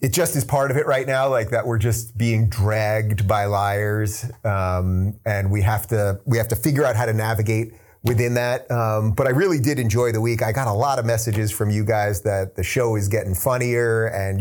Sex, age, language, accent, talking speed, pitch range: male, 30-49, English, American, 230 wpm, 105-125 Hz